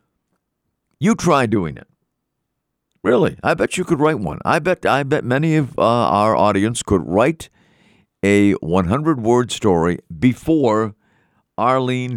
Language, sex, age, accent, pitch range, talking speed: English, male, 50-69, American, 95-160 Hz, 135 wpm